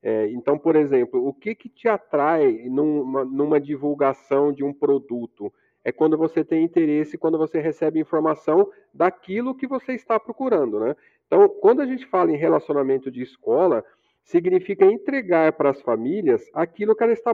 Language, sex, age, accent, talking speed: Portuguese, male, 40-59, Brazilian, 165 wpm